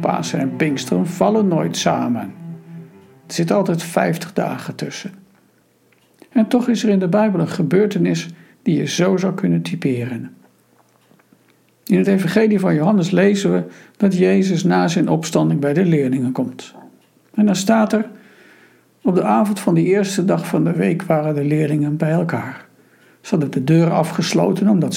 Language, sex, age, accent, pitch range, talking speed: Dutch, male, 60-79, Dutch, 150-195 Hz, 165 wpm